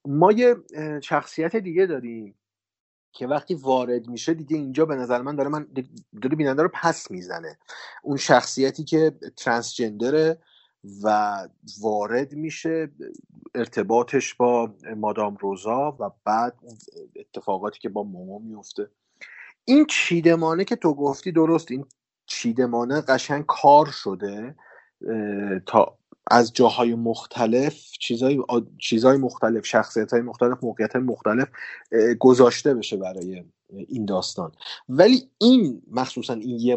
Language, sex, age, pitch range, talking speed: Persian, male, 30-49, 110-155 Hz, 115 wpm